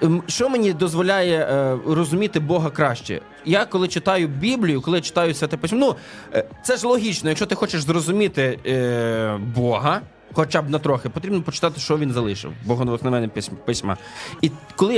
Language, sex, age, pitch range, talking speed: Ukrainian, male, 20-39, 145-190 Hz, 155 wpm